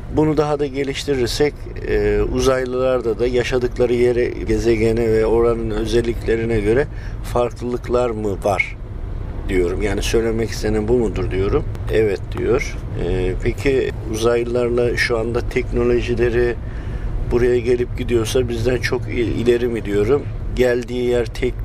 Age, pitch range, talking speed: 50-69, 110-125 Hz, 120 wpm